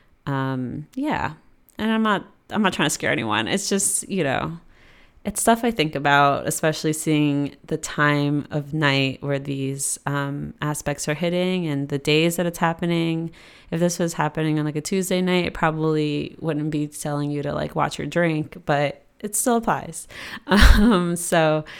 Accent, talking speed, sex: American, 175 wpm, female